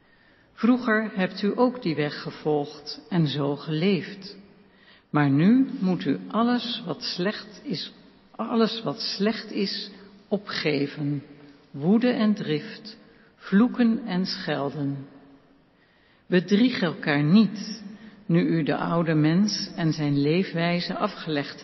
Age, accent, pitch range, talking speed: 60-79, Dutch, 150-215 Hz, 105 wpm